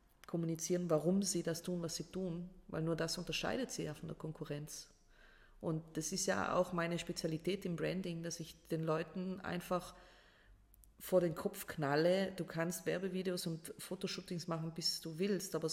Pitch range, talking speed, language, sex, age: 155-185 Hz, 170 wpm, German, female, 30-49